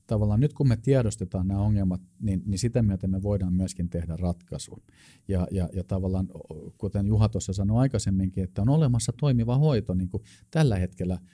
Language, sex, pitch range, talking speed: Finnish, male, 90-105 Hz, 180 wpm